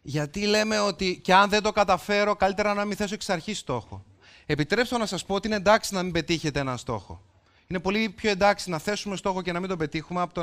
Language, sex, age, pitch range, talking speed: Greek, male, 30-49, 130-195 Hz, 235 wpm